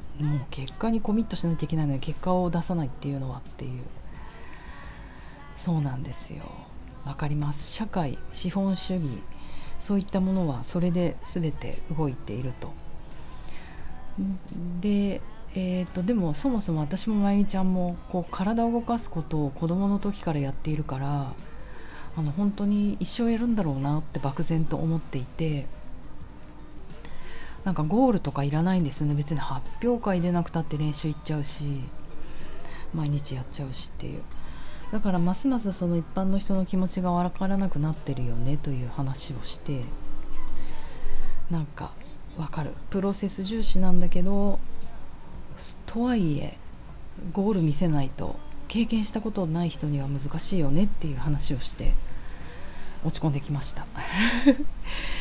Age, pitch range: 40-59, 145-195 Hz